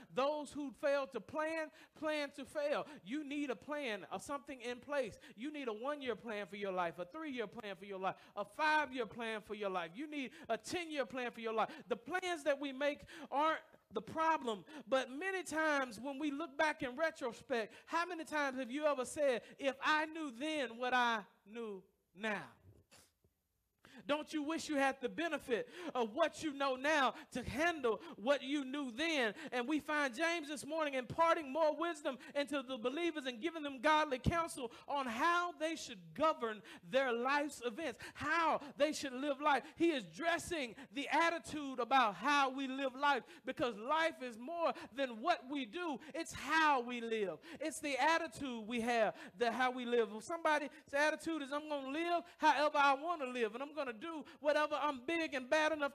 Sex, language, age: male, English, 40-59